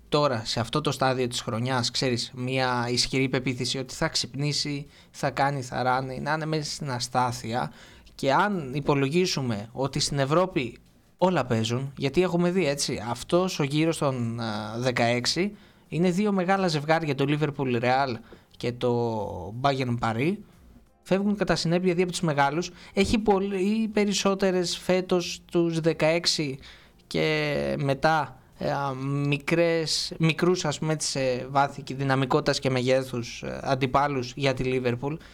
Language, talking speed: Greek, 130 wpm